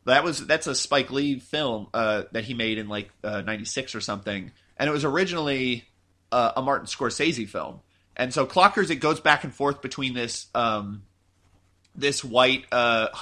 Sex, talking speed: male, 180 wpm